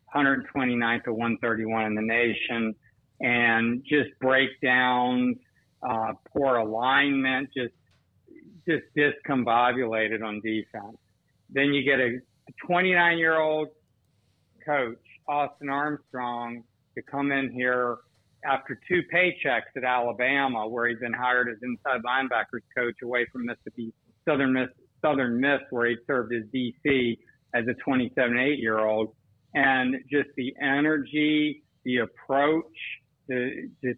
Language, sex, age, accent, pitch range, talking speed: English, male, 50-69, American, 120-150 Hz, 115 wpm